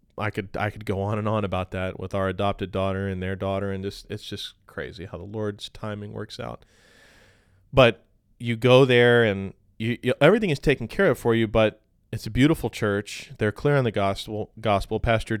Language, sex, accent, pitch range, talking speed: English, male, American, 100-120 Hz, 210 wpm